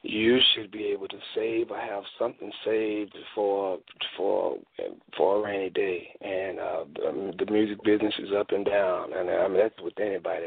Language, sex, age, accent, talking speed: English, male, 40-59, American, 180 wpm